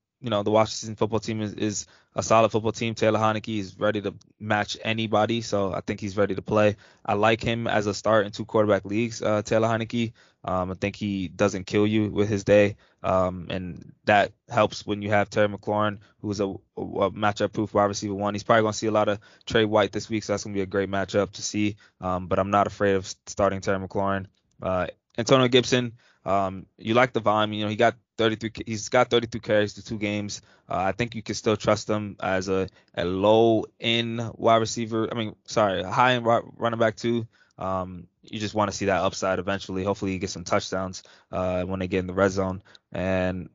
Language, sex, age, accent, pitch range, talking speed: English, male, 20-39, American, 100-110 Hz, 220 wpm